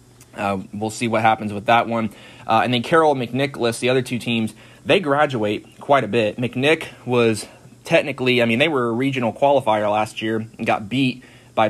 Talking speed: 195 wpm